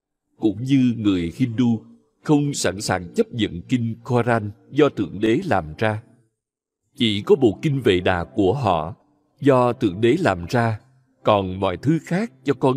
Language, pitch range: Vietnamese, 100-140 Hz